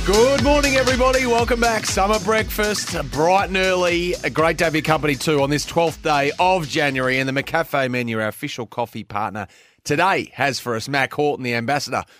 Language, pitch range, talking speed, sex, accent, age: English, 110-150 Hz, 190 wpm, male, Australian, 30-49